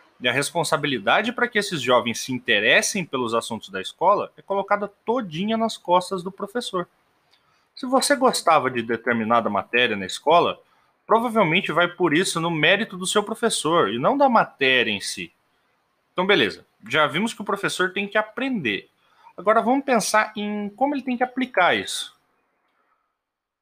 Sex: male